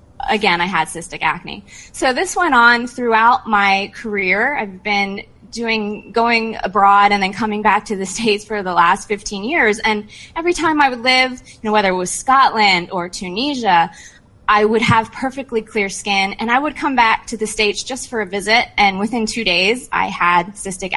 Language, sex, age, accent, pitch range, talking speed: English, female, 20-39, American, 180-230 Hz, 195 wpm